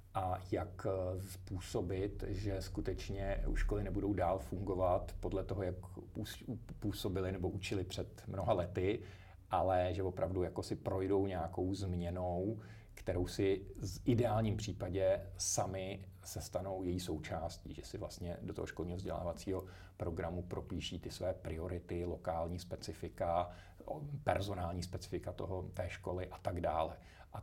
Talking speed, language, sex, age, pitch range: 130 wpm, Czech, male, 50-69, 90-100 Hz